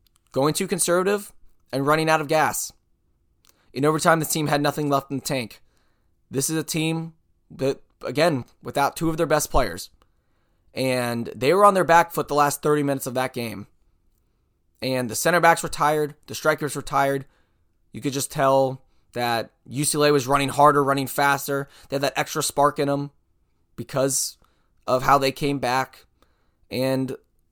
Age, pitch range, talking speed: 20-39, 115-160 Hz, 170 wpm